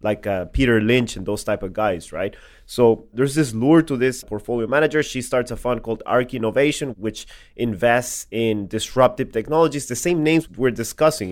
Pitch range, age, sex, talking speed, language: 110-135 Hz, 30-49, male, 185 wpm, English